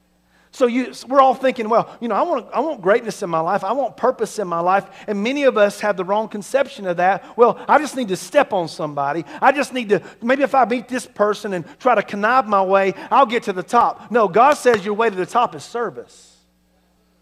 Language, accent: English, American